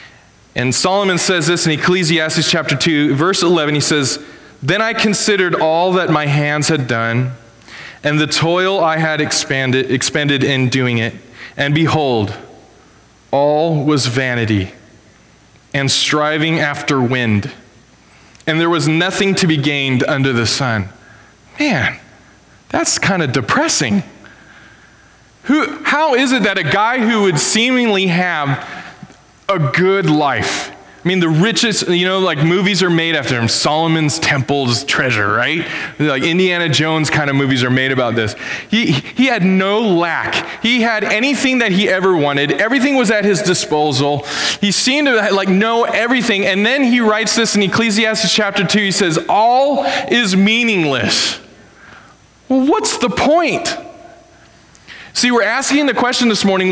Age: 20-39